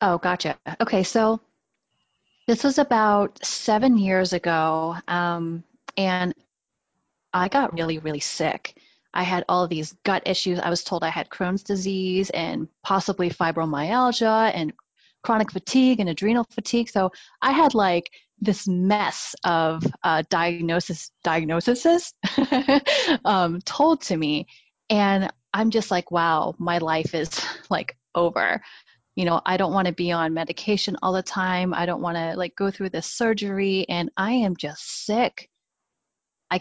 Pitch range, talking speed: 165-205 Hz, 150 wpm